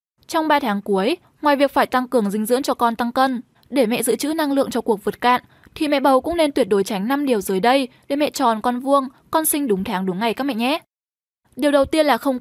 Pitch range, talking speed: 220-290 Hz, 270 wpm